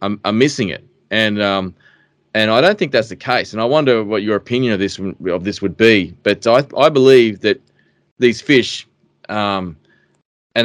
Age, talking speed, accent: 20-39, 190 wpm, Australian